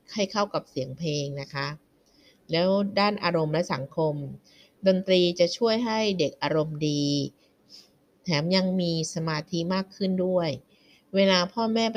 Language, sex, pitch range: Thai, female, 150-190 Hz